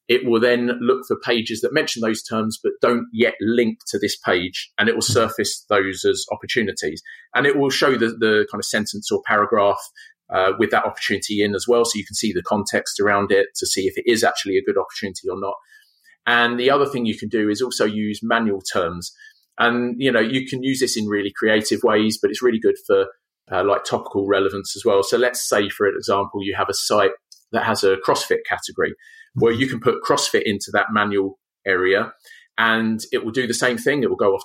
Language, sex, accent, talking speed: English, male, British, 225 wpm